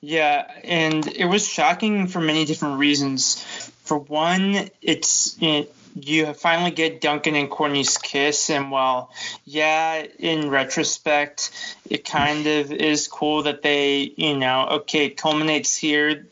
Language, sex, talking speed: English, male, 145 wpm